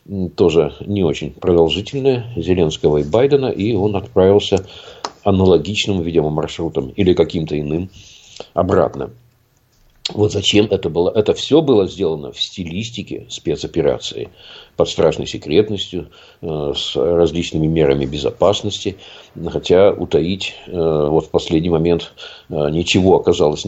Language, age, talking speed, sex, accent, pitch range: Russian, 50-69, 105 wpm, male, native, 85-110 Hz